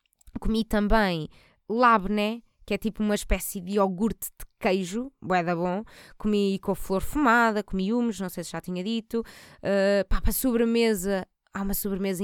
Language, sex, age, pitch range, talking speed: Portuguese, female, 20-39, 175-225 Hz, 160 wpm